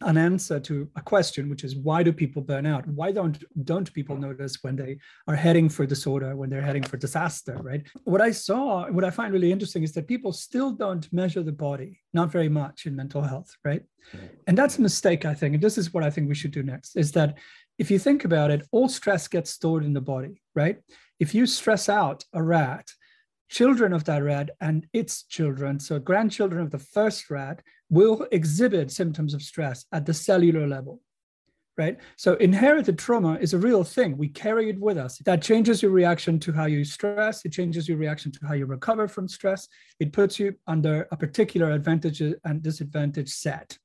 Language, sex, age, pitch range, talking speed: English, male, 40-59, 150-200 Hz, 210 wpm